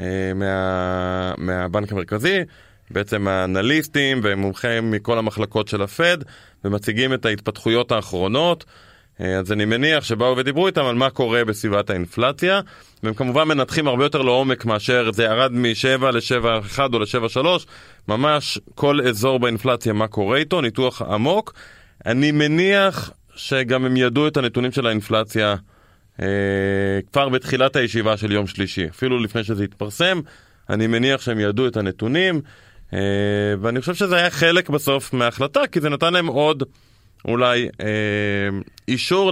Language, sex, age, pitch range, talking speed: Hebrew, male, 20-39, 105-135 Hz, 140 wpm